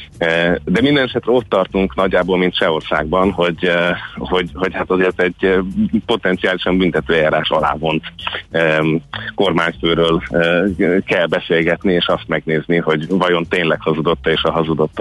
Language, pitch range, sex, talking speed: Hungarian, 85-100 Hz, male, 120 wpm